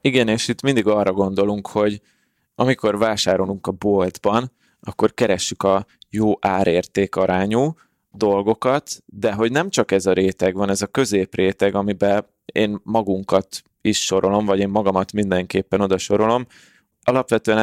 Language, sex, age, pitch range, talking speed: Hungarian, male, 20-39, 95-115 Hz, 135 wpm